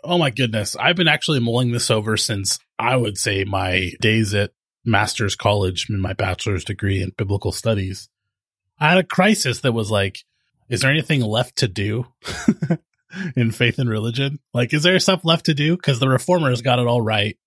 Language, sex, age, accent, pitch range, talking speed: English, male, 30-49, American, 105-140 Hz, 190 wpm